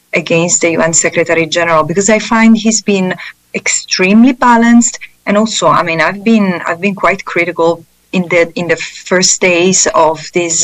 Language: English